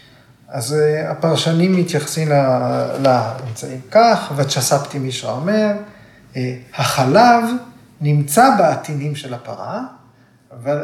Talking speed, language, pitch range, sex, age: 85 wpm, Hebrew, 135-195 Hz, male, 30-49